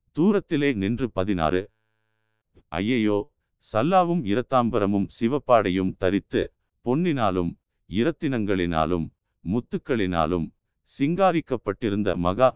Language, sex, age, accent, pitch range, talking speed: Tamil, male, 50-69, native, 95-125 Hz, 60 wpm